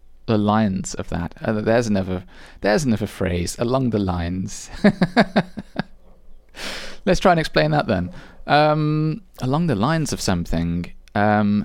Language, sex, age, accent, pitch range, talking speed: English, male, 20-39, British, 95-150 Hz, 135 wpm